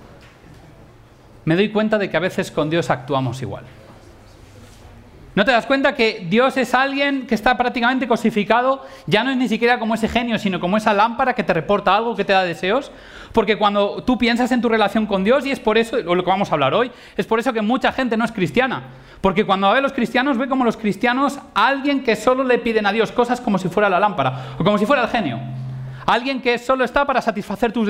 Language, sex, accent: Spanish, male, Spanish